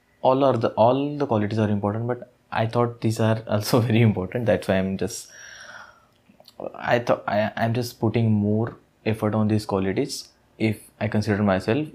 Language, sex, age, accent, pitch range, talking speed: English, male, 20-39, Indian, 105-120 Hz, 175 wpm